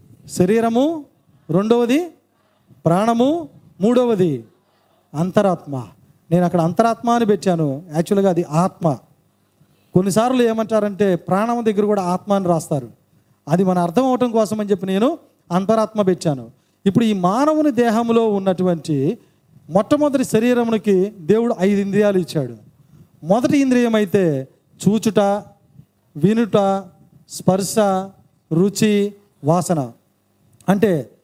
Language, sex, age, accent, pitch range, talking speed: Telugu, male, 40-59, native, 160-225 Hz, 90 wpm